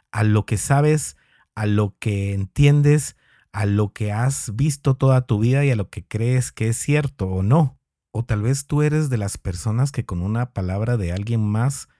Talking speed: 205 wpm